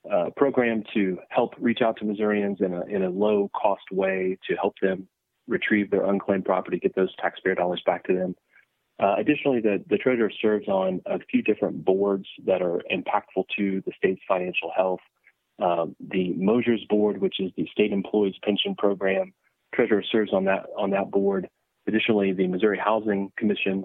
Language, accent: English, American